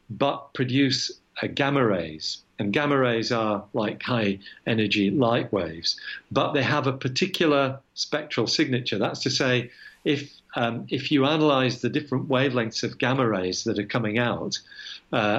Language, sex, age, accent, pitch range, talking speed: English, male, 50-69, British, 110-140 Hz, 150 wpm